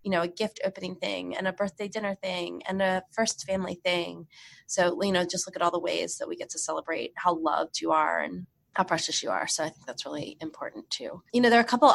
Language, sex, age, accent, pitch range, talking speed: English, female, 20-39, American, 175-215 Hz, 260 wpm